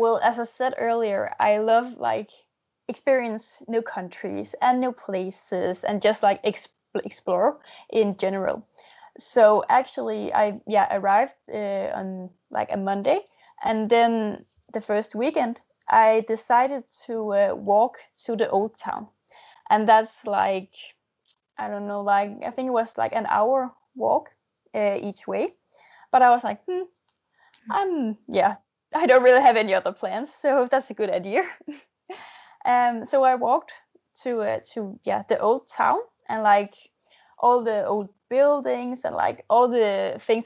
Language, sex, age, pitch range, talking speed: English, female, 10-29, 210-260 Hz, 155 wpm